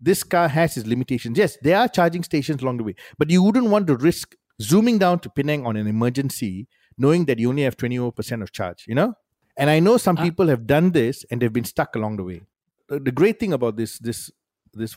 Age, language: 50-69, English